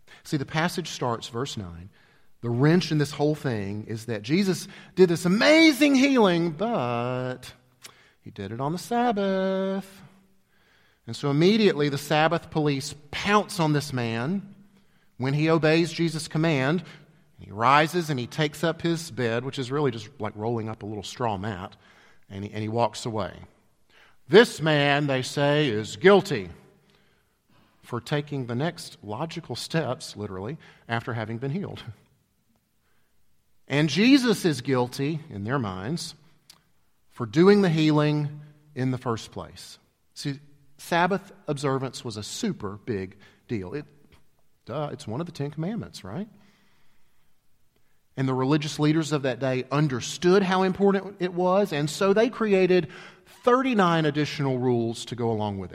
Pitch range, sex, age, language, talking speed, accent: 115-170 Hz, male, 40-59, English, 145 wpm, American